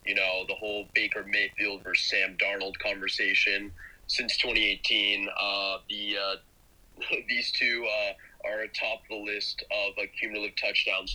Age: 30-49